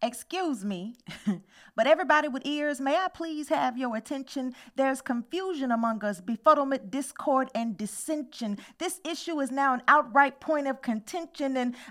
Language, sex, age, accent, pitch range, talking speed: English, female, 40-59, American, 230-315 Hz, 150 wpm